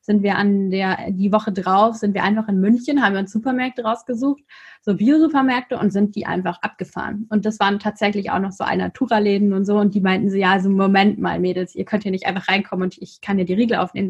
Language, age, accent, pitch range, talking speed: German, 20-39, German, 200-260 Hz, 245 wpm